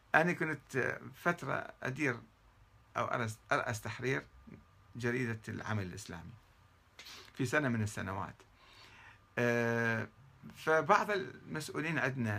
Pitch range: 105-145 Hz